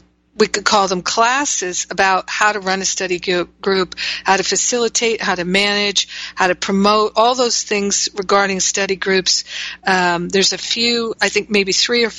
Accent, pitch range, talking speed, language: American, 180-220 Hz, 175 wpm, English